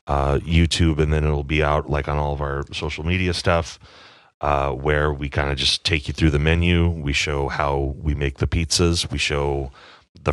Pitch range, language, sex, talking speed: 75-85 Hz, English, male, 210 wpm